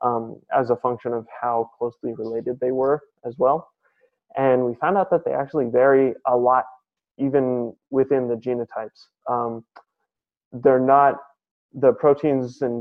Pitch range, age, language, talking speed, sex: 120-135 Hz, 20-39, English, 150 wpm, male